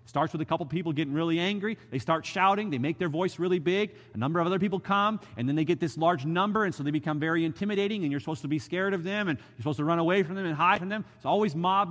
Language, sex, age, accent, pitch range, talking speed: English, male, 30-49, American, 130-185 Hz, 300 wpm